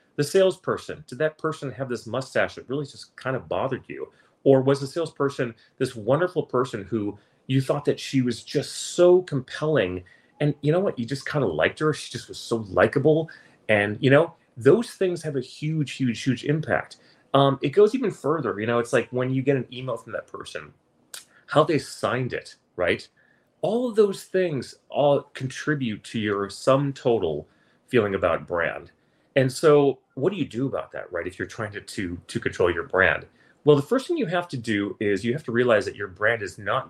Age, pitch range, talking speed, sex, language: 30-49, 115-155 Hz, 210 wpm, male, English